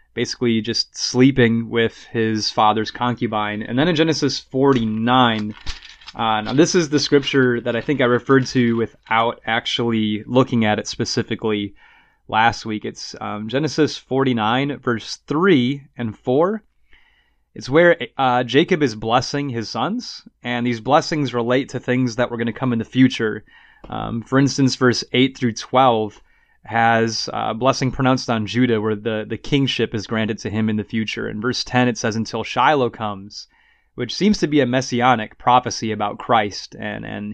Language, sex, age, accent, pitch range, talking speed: English, male, 20-39, American, 110-135 Hz, 170 wpm